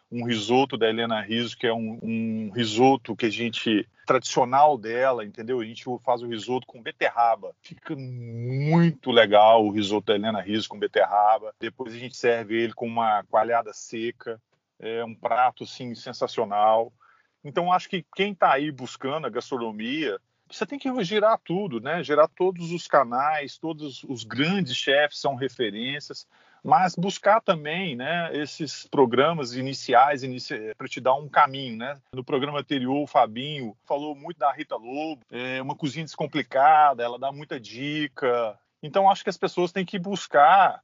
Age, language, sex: 40-59, Portuguese, male